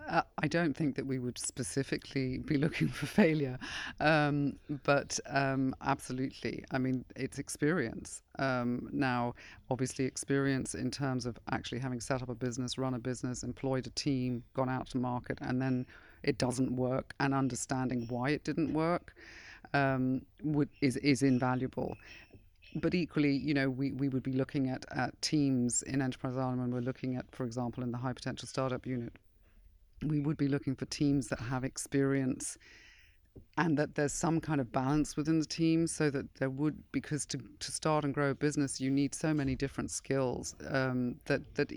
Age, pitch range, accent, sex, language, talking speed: 40-59, 125-145 Hz, British, female, English, 180 wpm